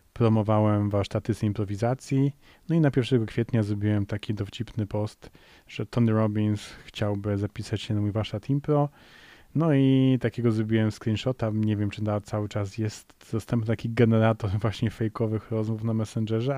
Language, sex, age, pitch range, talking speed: Polish, male, 30-49, 105-120 Hz, 150 wpm